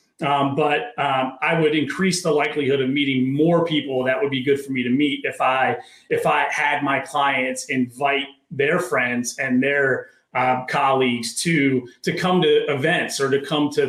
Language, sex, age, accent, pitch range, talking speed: English, male, 30-49, American, 135-160 Hz, 185 wpm